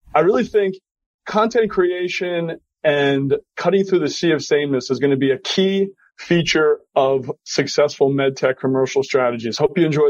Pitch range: 150-195 Hz